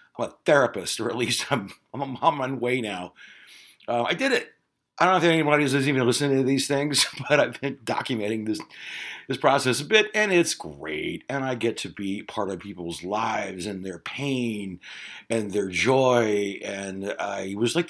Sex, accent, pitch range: male, American, 100-140 Hz